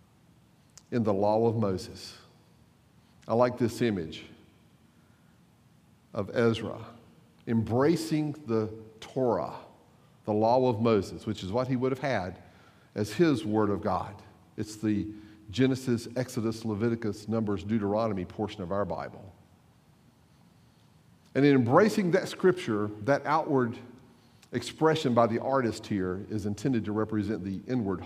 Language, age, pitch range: English, 50-69, 105-135 Hz